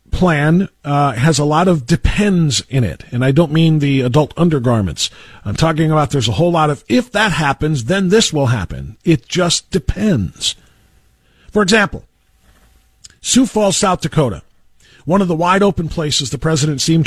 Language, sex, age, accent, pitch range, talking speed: English, male, 50-69, American, 145-185 Hz, 170 wpm